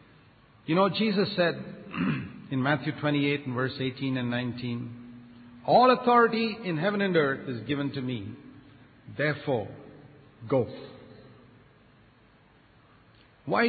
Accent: Indian